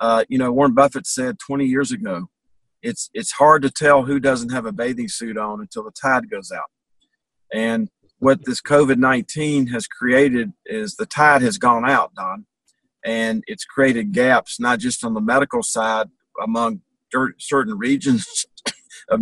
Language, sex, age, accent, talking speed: English, male, 50-69, American, 170 wpm